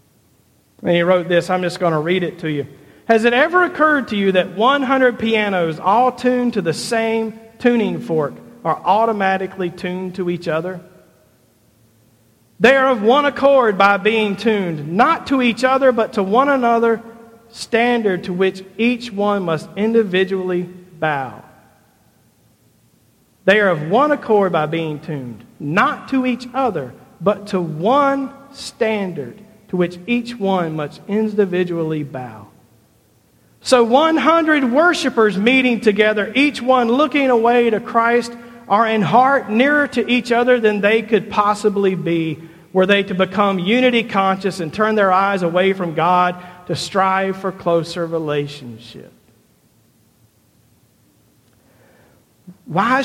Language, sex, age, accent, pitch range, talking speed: English, male, 50-69, American, 180-245 Hz, 140 wpm